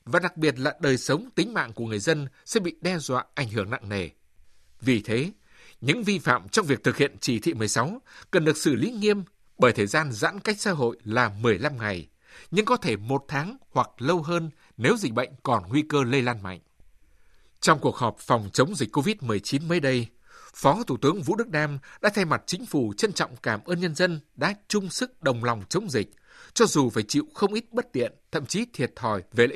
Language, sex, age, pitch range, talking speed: Vietnamese, male, 60-79, 120-180 Hz, 225 wpm